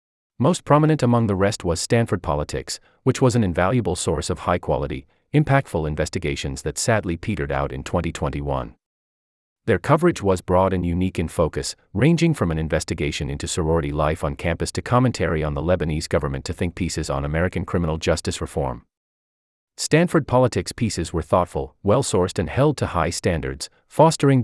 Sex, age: male, 40-59